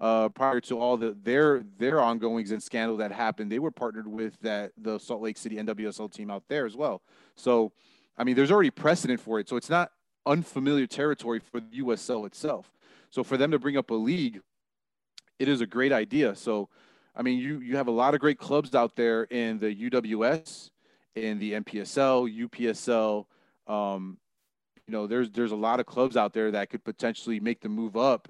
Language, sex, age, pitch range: English, male, 30-49, 110-125 Hz